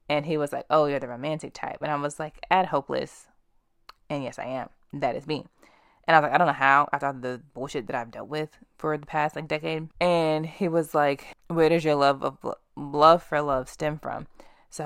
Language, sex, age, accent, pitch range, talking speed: English, female, 20-39, American, 140-170 Hz, 235 wpm